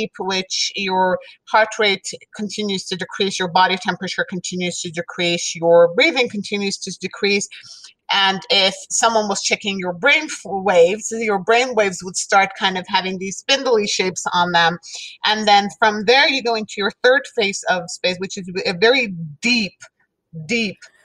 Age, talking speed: 30-49, 160 wpm